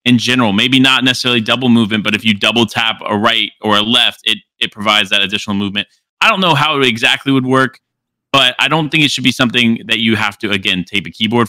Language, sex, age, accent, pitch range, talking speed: English, male, 20-39, American, 100-125 Hz, 245 wpm